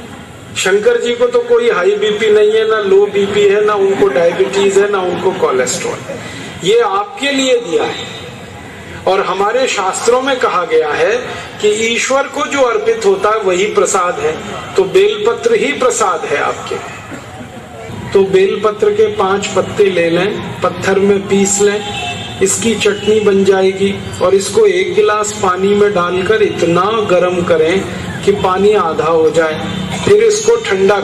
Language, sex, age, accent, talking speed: Hindi, male, 50-69, native, 155 wpm